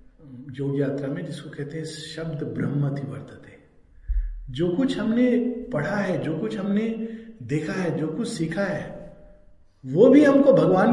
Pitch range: 150-250 Hz